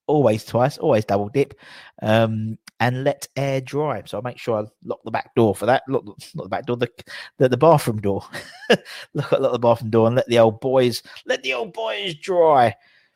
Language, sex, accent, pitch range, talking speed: English, male, British, 120-165 Hz, 210 wpm